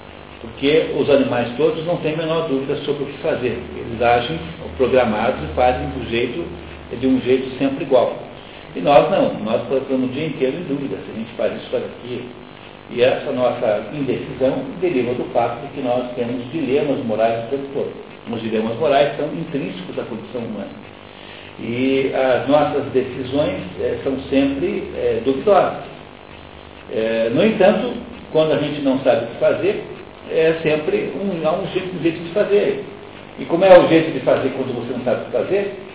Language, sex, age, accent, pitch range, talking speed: Portuguese, male, 60-79, Brazilian, 130-195 Hz, 175 wpm